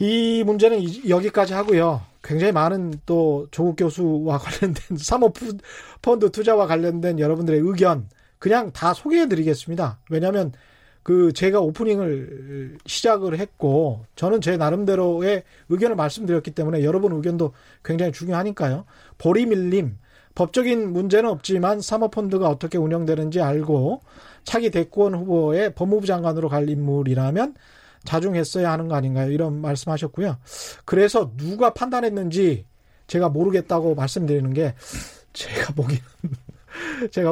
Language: Korean